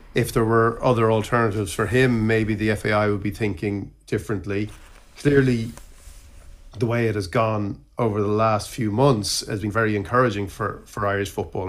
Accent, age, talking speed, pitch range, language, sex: Irish, 40-59, 170 wpm, 100-125 Hz, English, male